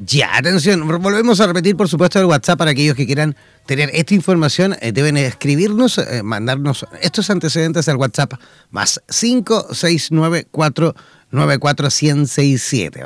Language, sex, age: Spanish, male, 30-49